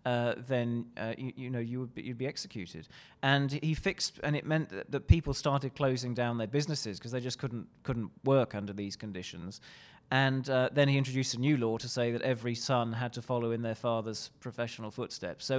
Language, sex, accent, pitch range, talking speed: English, male, British, 115-140 Hz, 220 wpm